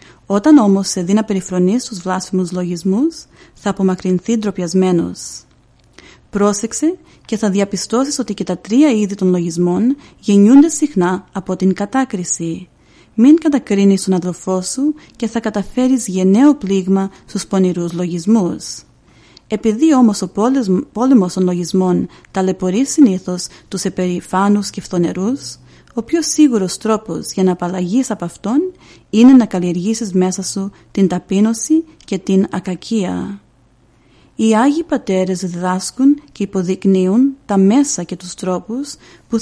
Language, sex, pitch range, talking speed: Greek, female, 185-230 Hz, 130 wpm